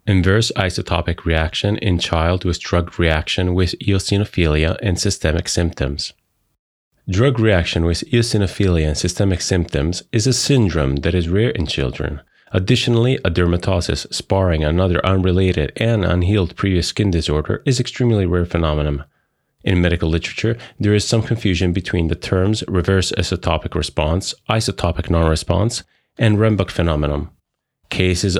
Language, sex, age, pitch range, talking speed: English, male, 30-49, 85-105 Hz, 130 wpm